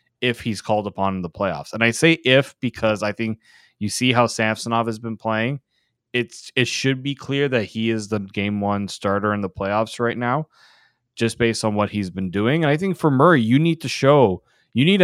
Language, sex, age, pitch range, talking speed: English, male, 20-39, 105-135 Hz, 225 wpm